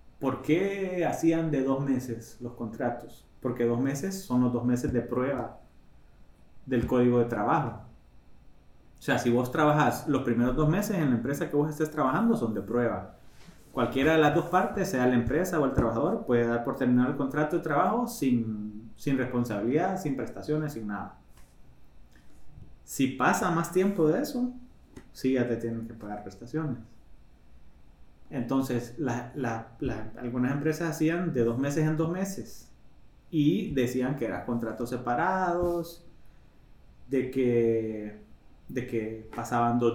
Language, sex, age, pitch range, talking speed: Spanish, male, 30-49, 115-155 Hz, 150 wpm